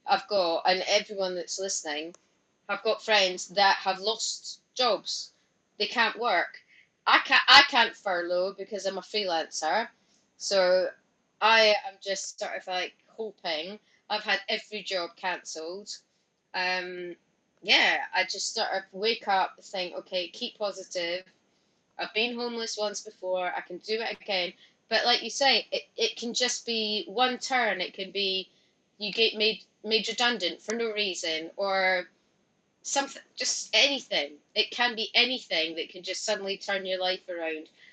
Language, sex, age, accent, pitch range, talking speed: English, female, 20-39, British, 185-225 Hz, 155 wpm